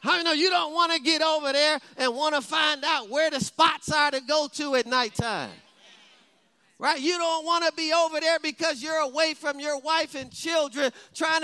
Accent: American